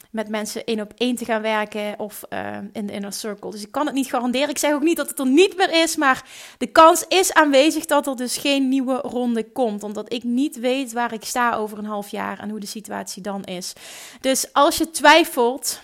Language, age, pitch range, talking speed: Dutch, 30-49, 215-280 Hz, 240 wpm